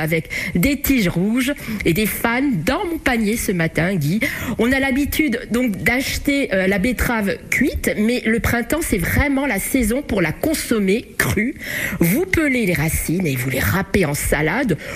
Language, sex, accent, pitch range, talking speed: French, female, French, 195-275 Hz, 170 wpm